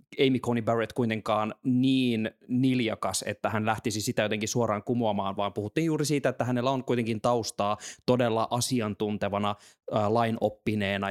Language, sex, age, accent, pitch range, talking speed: Finnish, male, 20-39, native, 110-135 Hz, 135 wpm